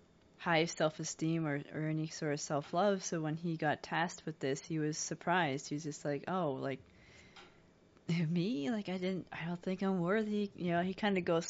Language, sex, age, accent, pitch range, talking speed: English, female, 20-39, American, 155-185 Hz, 210 wpm